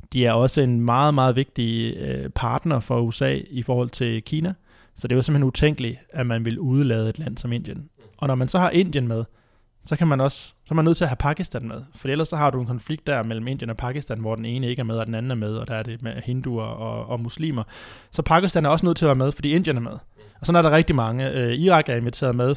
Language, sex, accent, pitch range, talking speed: Danish, male, native, 115-140 Hz, 275 wpm